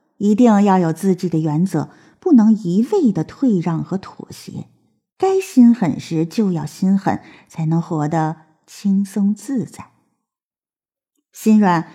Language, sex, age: Chinese, female, 50-69